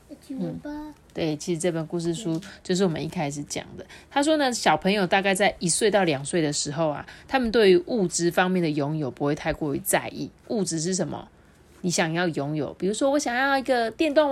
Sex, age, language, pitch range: female, 30-49, Chinese, 160-235 Hz